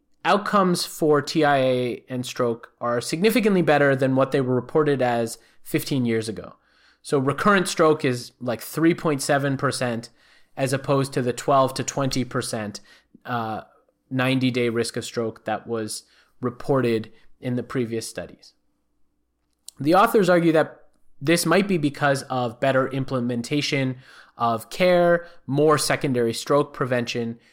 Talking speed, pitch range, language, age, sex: 130 wpm, 120-150 Hz, English, 20-39, male